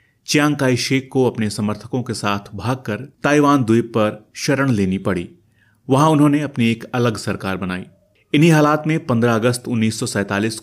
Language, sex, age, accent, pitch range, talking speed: Hindi, male, 30-49, native, 100-130 Hz, 150 wpm